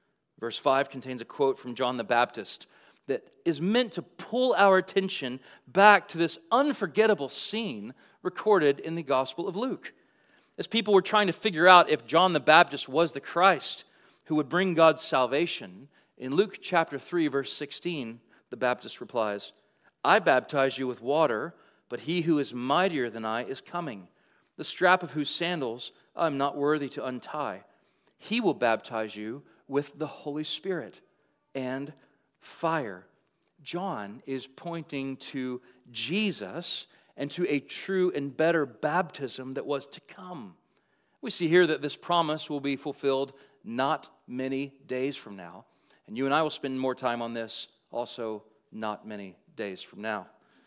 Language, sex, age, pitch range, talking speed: English, male, 40-59, 125-175 Hz, 160 wpm